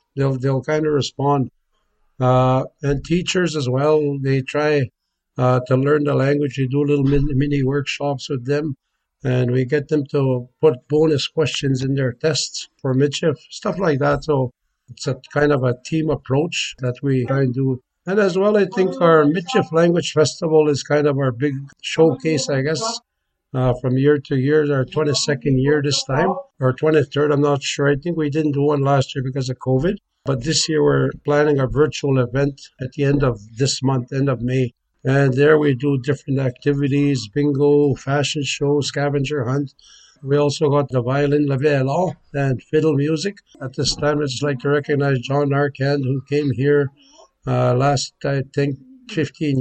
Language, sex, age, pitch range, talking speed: English, male, 60-79, 135-150 Hz, 185 wpm